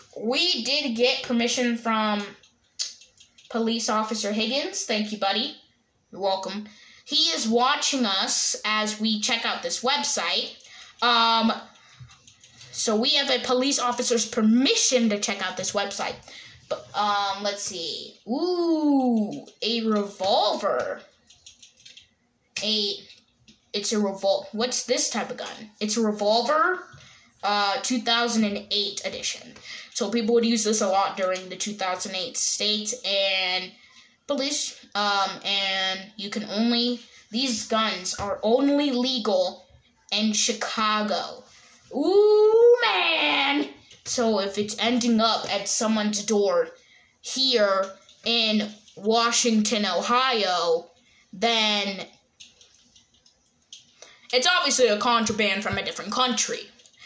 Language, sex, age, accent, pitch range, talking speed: English, female, 10-29, American, 200-250 Hz, 110 wpm